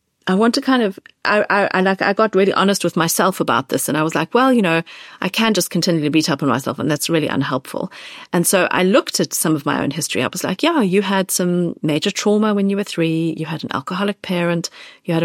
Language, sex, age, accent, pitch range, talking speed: English, female, 40-59, British, 160-195 Hz, 265 wpm